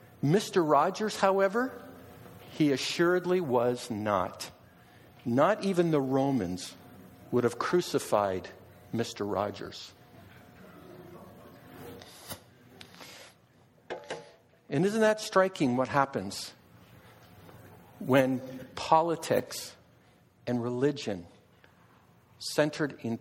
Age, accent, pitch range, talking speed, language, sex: 60-79, American, 120-175 Hz, 70 wpm, English, male